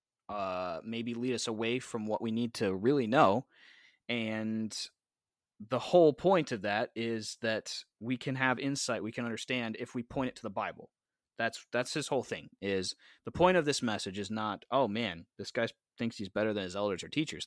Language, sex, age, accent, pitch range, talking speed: English, male, 30-49, American, 100-125 Hz, 205 wpm